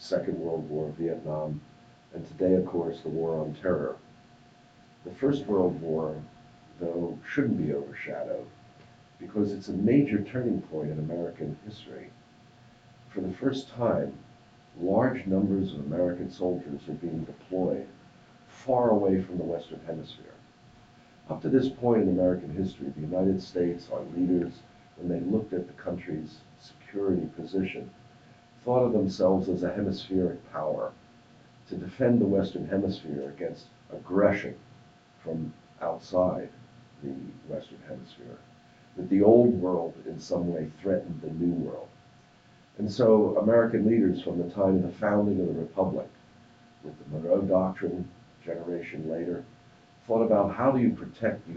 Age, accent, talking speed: 60-79, American, 145 wpm